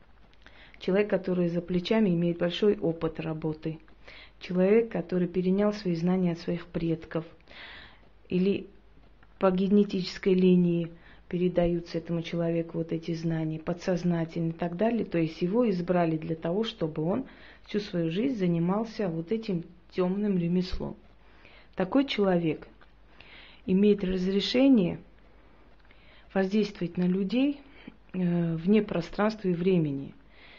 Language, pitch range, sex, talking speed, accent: Russian, 170-195 Hz, female, 110 wpm, native